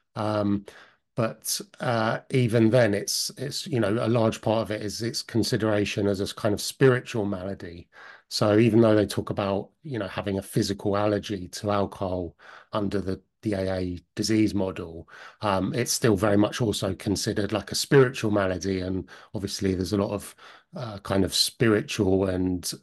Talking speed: 170 wpm